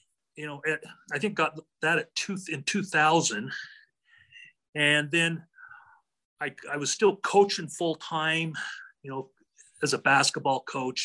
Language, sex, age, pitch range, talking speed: English, male, 40-59, 140-180 Hz, 135 wpm